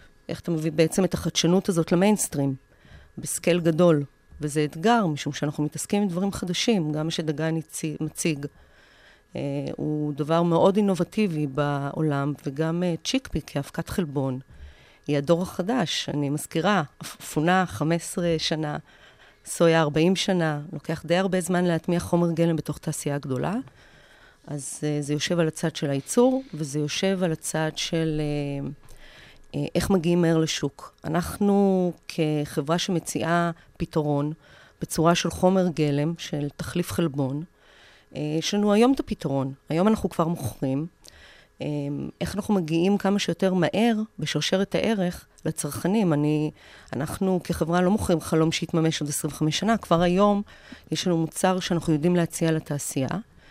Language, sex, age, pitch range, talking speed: Hebrew, female, 40-59, 150-185 Hz, 135 wpm